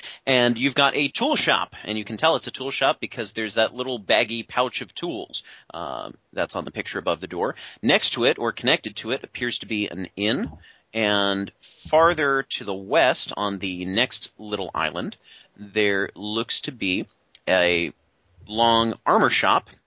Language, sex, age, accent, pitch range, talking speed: English, male, 30-49, American, 100-125 Hz, 180 wpm